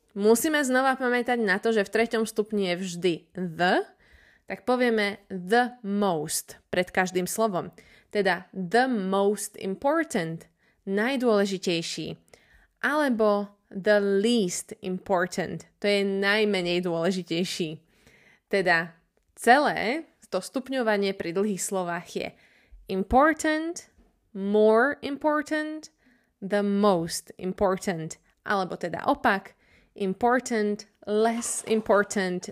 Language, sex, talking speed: Slovak, female, 95 wpm